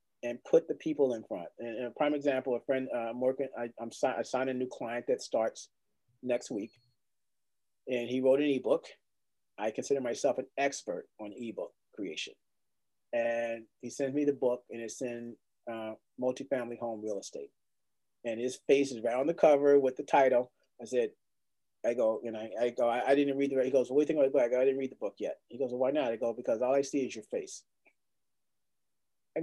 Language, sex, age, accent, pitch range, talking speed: English, male, 30-49, American, 125-175 Hz, 220 wpm